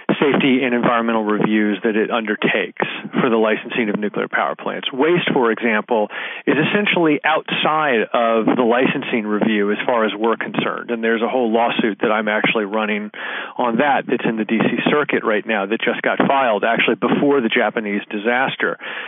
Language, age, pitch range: English, 40-59, 110-135 Hz